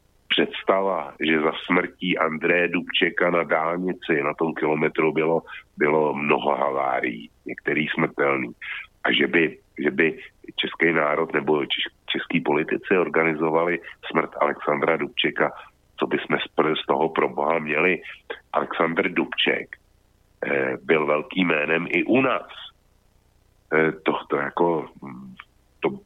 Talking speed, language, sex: 115 wpm, Slovak, male